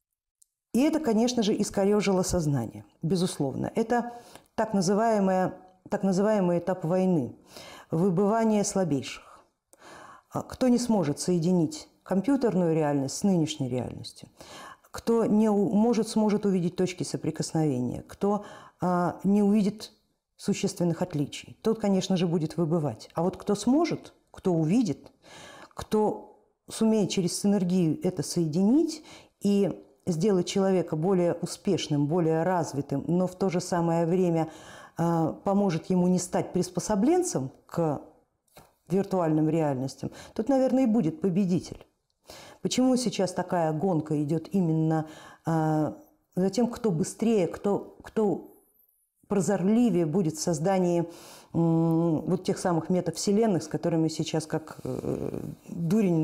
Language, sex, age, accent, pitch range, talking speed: Russian, female, 50-69, native, 160-205 Hz, 110 wpm